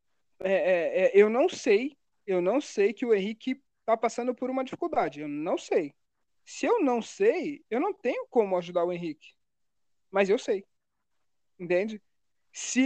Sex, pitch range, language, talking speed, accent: male, 190-275 Hz, Portuguese, 170 wpm, Brazilian